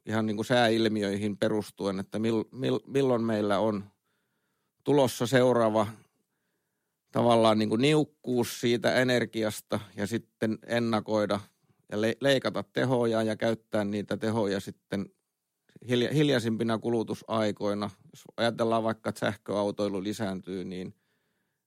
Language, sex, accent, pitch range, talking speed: Finnish, male, native, 100-115 Hz, 90 wpm